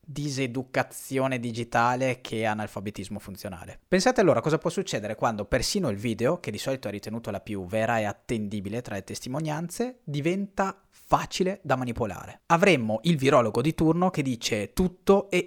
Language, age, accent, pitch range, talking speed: Italian, 30-49, native, 110-160 Hz, 160 wpm